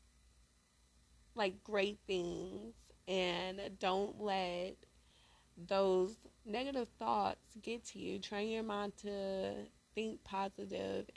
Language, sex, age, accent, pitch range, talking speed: English, female, 20-39, American, 175-210 Hz, 95 wpm